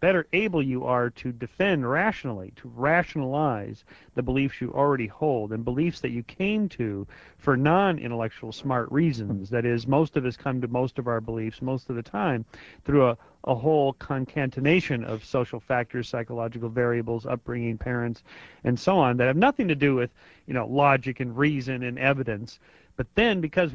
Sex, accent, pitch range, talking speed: male, American, 115-145 Hz, 175 wpm